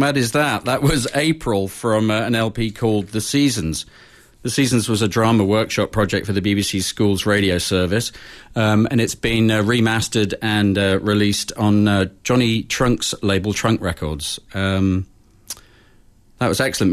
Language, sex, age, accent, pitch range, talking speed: English, male, 40-59, British, 95-115 Hz, 165 wpm